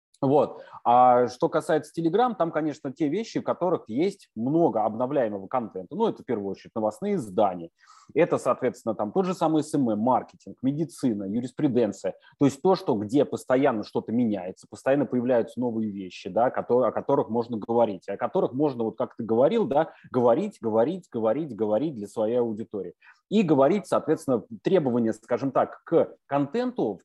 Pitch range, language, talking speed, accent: 115-165 Hz, Russian, 160 wpm, native